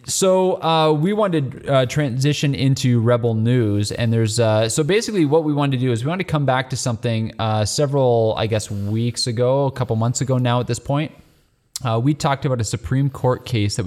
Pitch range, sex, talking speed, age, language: 100-130 Hz, male, 220 wpm, 20-39, English